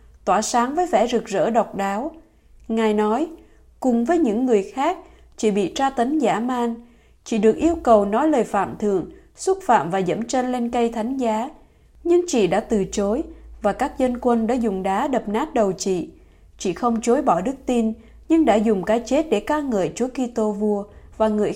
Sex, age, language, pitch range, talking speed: female, 20-39, Vietnamese, 210-285 Hz, 205 wpm